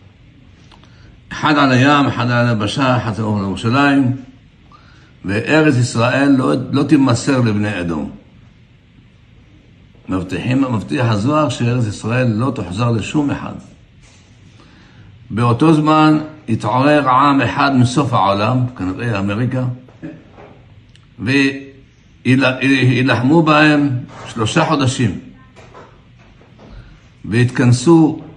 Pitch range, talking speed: 115-145 Hz, 80 wpm